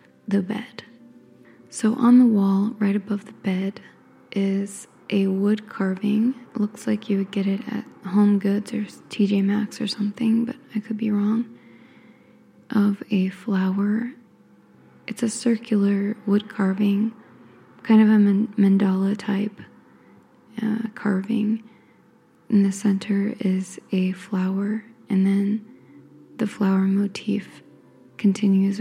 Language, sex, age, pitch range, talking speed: English, female, 20-39, 195-225 Hz, 125 wpm